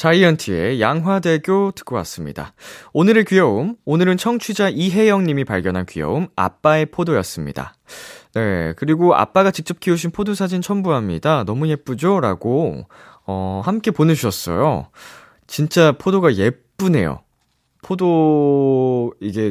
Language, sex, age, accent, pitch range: Korean, male, 20-39, native, 100-165 Hz